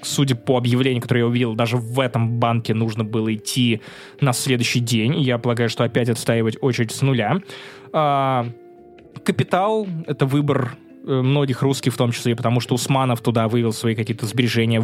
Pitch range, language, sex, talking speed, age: 120-145 Hz, Russian, male, 160 wpm, 20-39